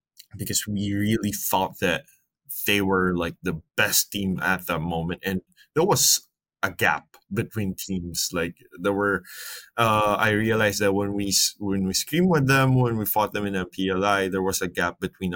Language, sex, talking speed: English, male, 185 wpm